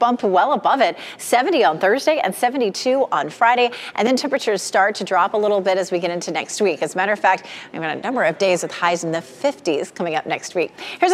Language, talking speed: English, 255 wpm